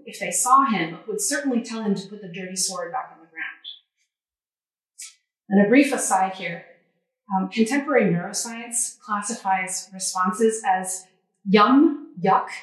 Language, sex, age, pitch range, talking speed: English, female, 30-49, 190-260 Hz, 145 wpm